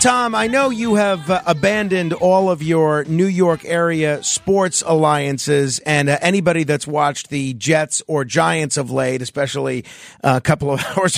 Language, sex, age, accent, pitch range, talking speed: English, male, 40-59, American, 155-225 Hz, 170 wpm